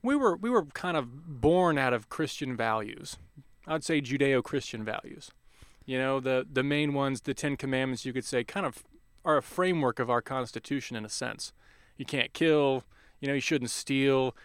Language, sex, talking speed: English, male, 190 wpm